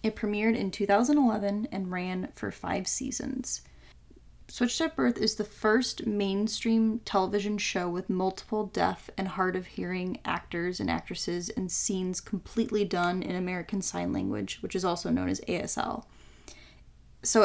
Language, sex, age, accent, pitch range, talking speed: English, female, 10-29, American, 185-215 Hz, 150 wpm